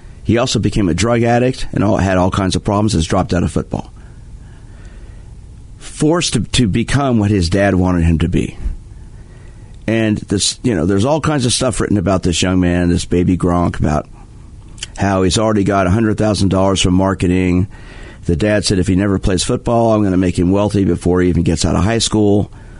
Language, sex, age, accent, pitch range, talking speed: English, male, 50-69, American, 95-115 Hz, 200 wpm